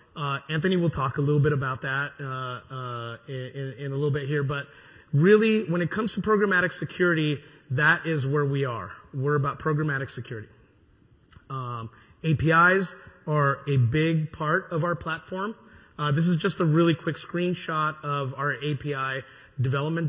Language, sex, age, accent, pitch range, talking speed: English, male, 30-49, American, 130-160 Hz, 165 wpm